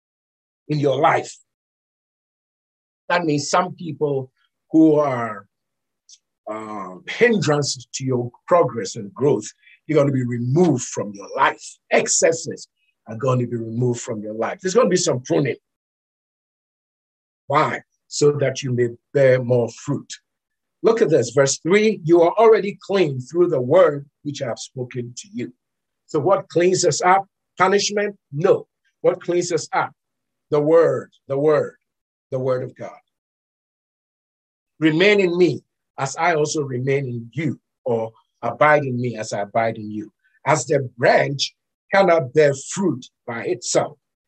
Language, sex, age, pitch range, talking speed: English, male, 50-69, 125-170 Hz, 150 wpm